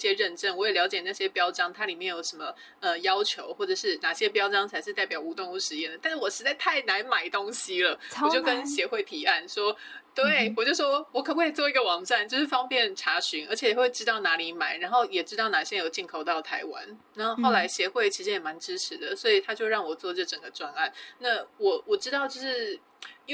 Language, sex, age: Chinese, female, 20-39